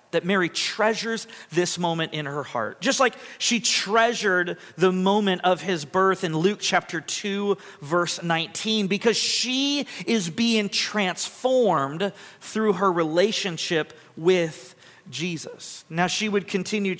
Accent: American